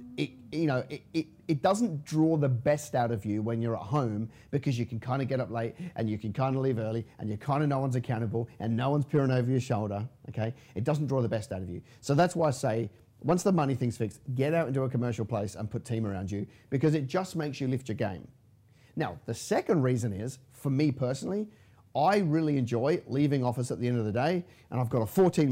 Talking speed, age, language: 255 wpm, 40-59, English